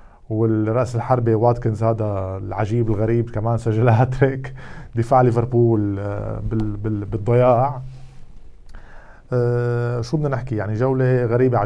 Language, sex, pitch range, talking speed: Arabic, male, 110-130 Hz, 95 wpm